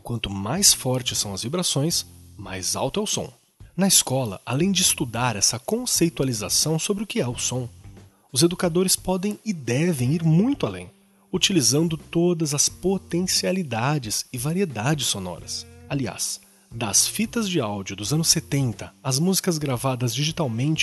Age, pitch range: 30-49, 115-175 Hz